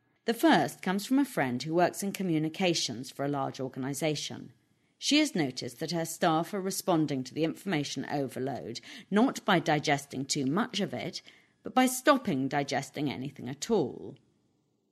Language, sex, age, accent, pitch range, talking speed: English, female, 40-59, British, 135-185 Hz, 160 wpm